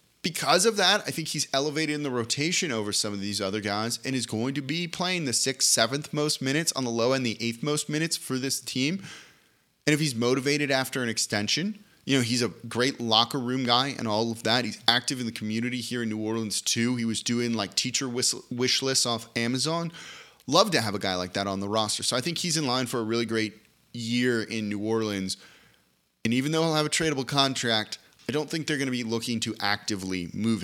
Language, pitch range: English, 110-145 Hz